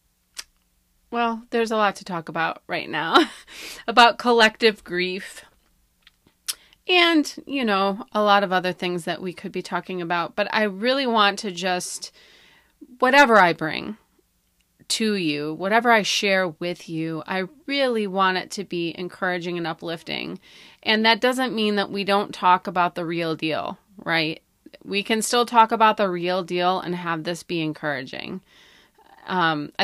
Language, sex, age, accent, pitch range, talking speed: English, female, 30-49, American, 165-205 Hz, 155 wpm